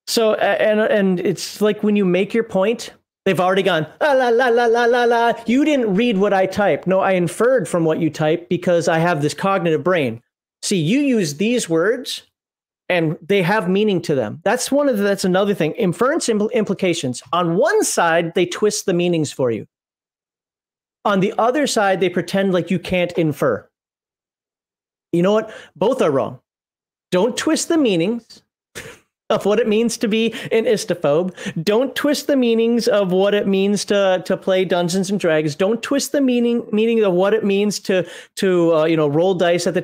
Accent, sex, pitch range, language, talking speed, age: American, male, 175-220 Hz, English, 195 wpm, 40-59